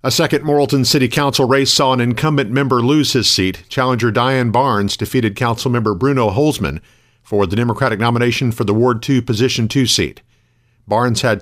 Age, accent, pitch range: 50-69, American, 110-135 Hz